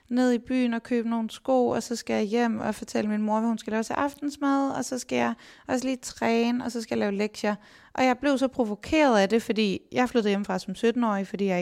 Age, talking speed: 20-39, 265 wpm